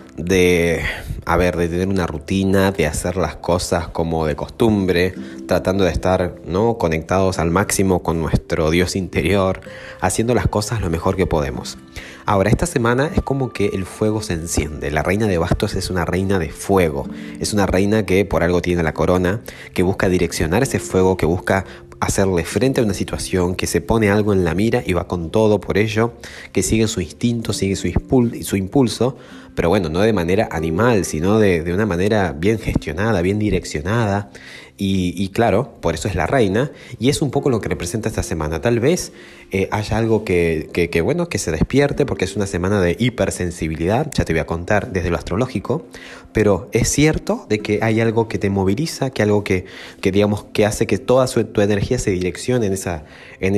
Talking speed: 200 wpm